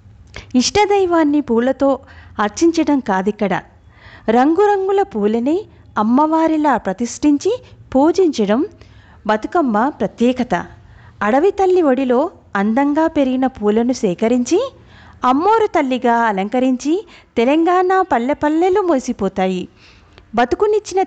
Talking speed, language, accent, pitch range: 75 wpm, Telugu, native, 215-325 Hz